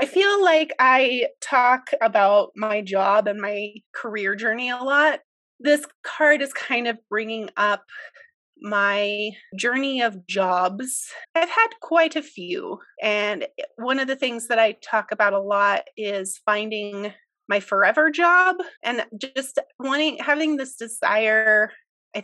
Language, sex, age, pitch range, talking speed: English, female, 30-49, 200-285 Hz, 145 wpm